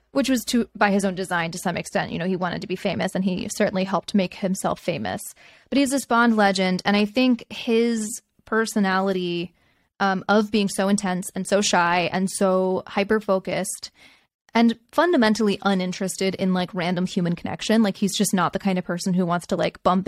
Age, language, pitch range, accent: 20-39, English, 185-220 Hz, American